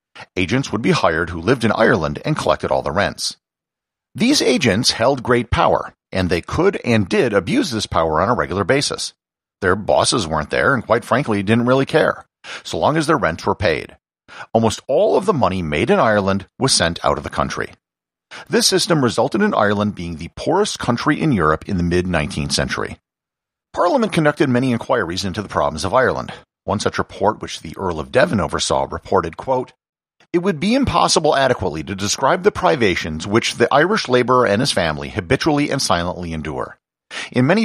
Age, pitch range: 50-69, 95-140 Hz